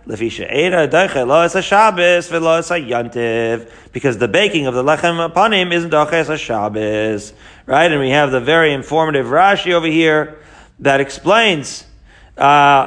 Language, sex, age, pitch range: English, male, 40-59, 140-170 Hz